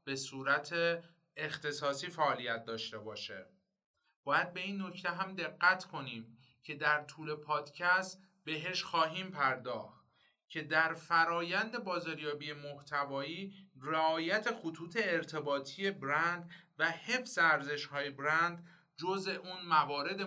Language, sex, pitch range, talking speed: Persian, male, 140-175 Hz, 110 wpm